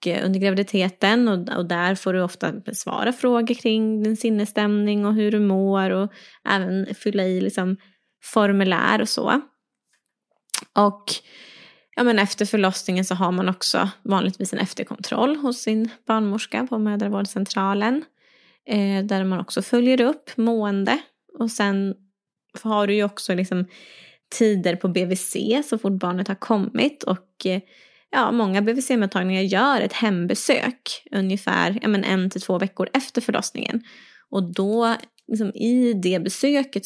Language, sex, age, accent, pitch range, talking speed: Swedish, female, 20-39, native, 185-230 Hz, 140 wpm